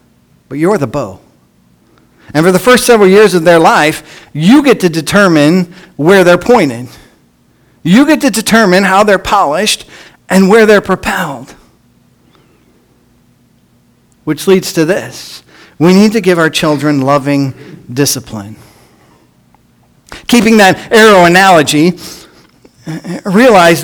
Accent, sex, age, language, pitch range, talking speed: American, male, 50-69, English, 145-200 Hz, 120 wpm